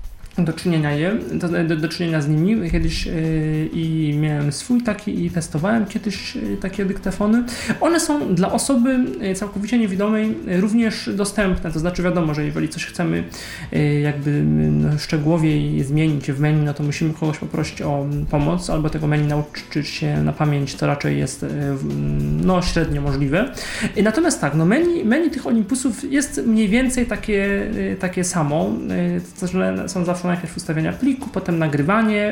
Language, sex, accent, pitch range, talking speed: Polish, male, native, 150-210 Hz, 165 wpm